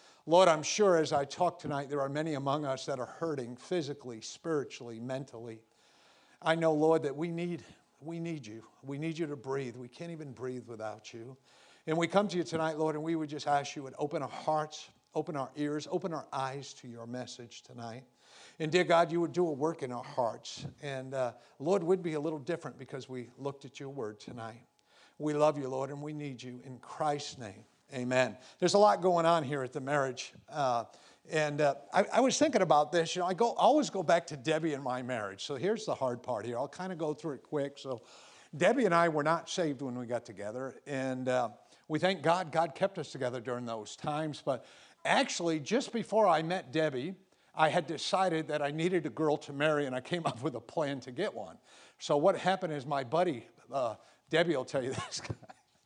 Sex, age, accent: male, 50-69, American